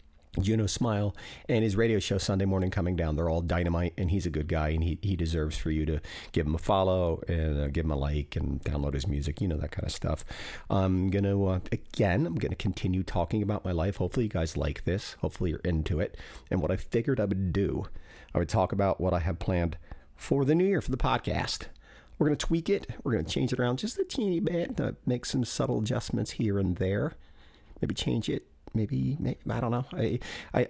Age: 40-59